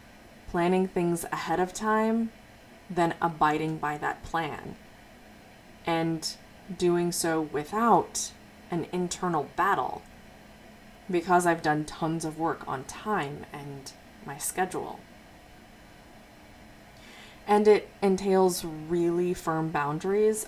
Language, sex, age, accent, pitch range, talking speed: English, female, 20-39, American, 155-185 Hz, 100 wpm